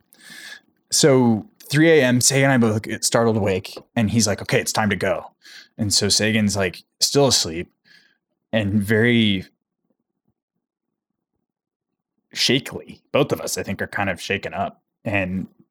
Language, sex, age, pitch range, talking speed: English, male, 20-39, 105-125 Hz, 145 wpm